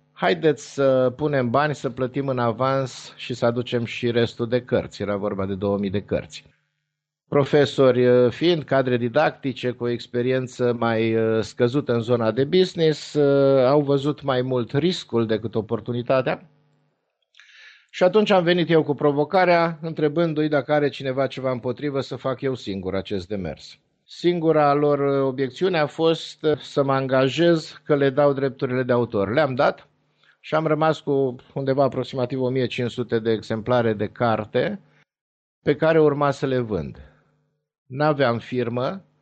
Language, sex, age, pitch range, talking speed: Romanian, male, 50-69, 120-150 Hz, 145 wpm